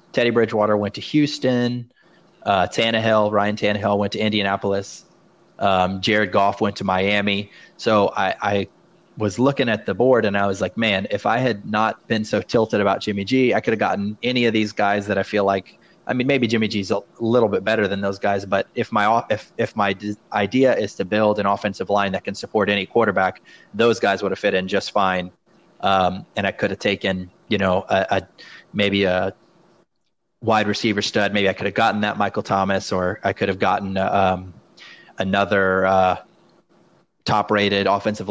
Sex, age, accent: male, 20-39, American